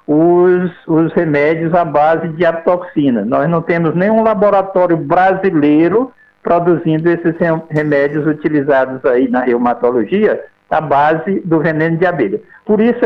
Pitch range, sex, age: 160-210 Hz, male, 60-79